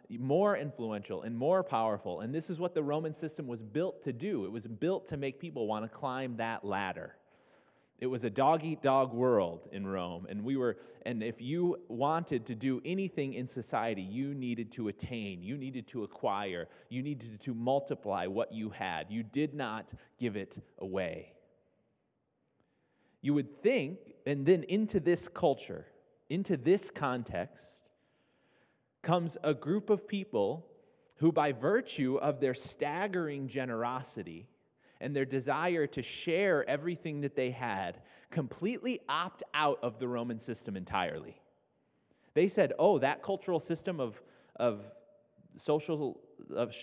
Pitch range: 120-165 Hz